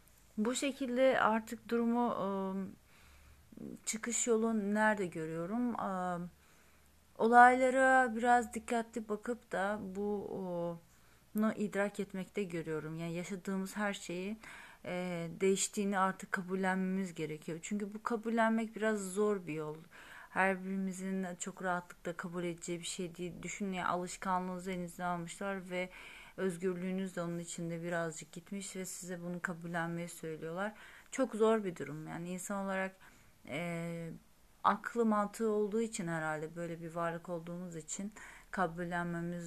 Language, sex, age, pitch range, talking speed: Turkish, female, 30-49, 175-220 Hz, 115 wpm